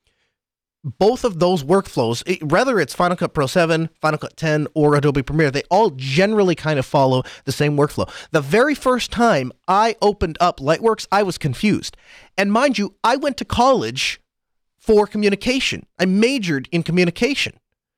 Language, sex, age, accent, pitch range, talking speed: English, male, 30-49, American, 150-205 Hz, 165 wpm